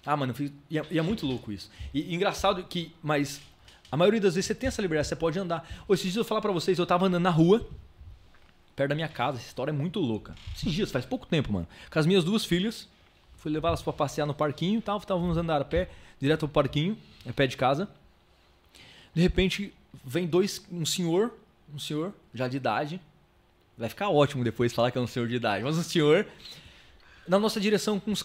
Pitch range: 135-210 Hz